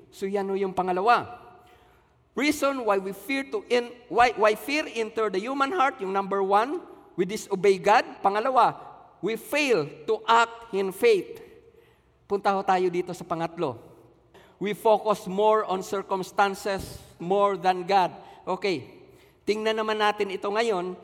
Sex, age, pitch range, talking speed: male, 50-69, 195-270 Hz, 140 wpm